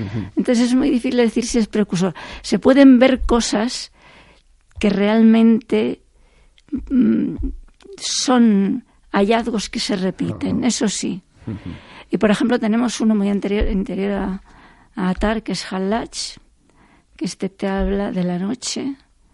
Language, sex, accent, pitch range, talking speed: Spanish, female, Spanish, 190-230 Hz, 130 wpm